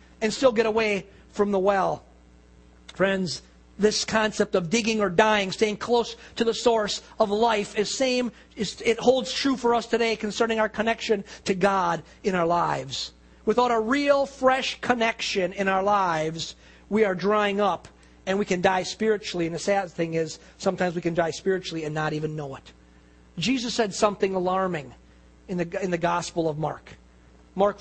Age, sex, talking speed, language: 50-69, male, 175 wpm, English